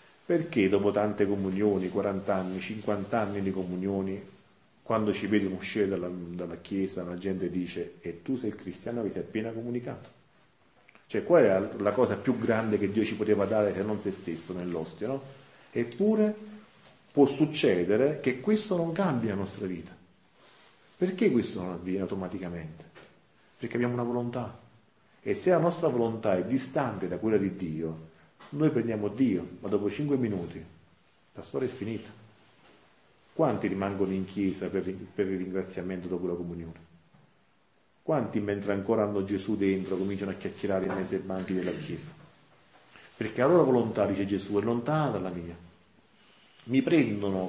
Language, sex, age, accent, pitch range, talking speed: Italian, male, 40-59, native, 95-120 Hz, 160 wpm